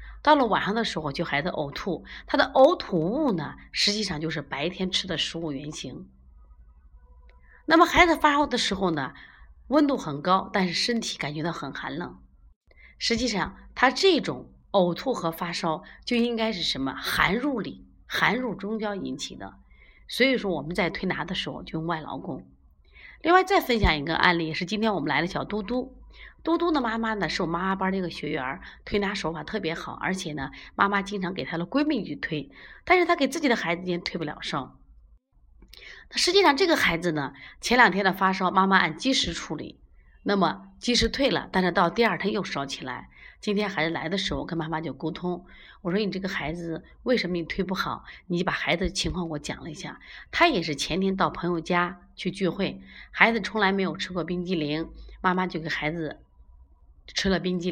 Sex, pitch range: female, 150-210 Hz